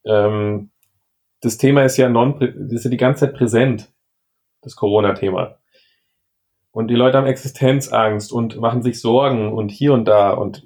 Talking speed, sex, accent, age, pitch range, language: 150 wpm, male, German, 30-49, 105-130 Hz, German